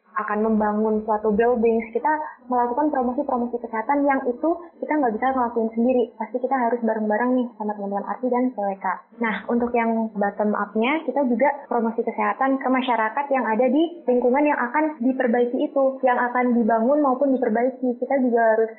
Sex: female